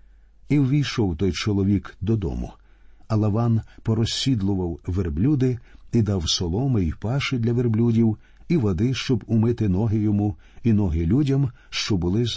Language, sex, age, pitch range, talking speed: Ukrainian, male, 50-69, 95-120 Hz, 135 wpm